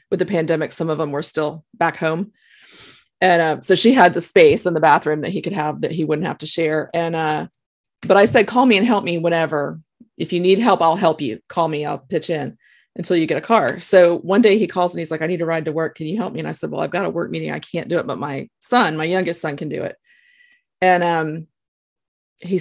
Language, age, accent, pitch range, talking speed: English, 30-49, American, 160-205 Hz, 270 wpm